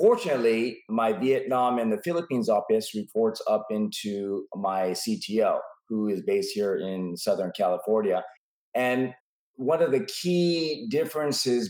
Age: 30-49